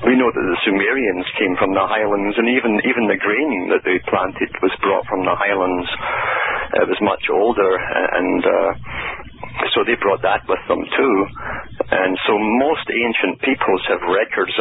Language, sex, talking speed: English, male, 175 wpm